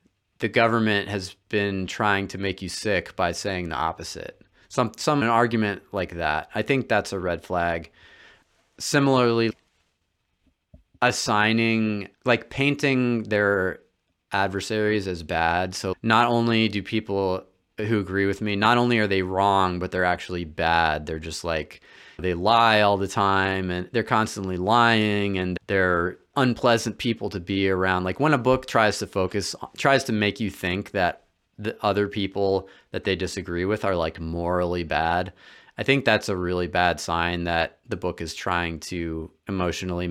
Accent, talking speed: American, 160 wpm